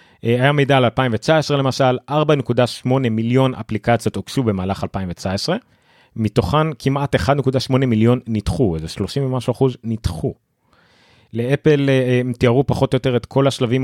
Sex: male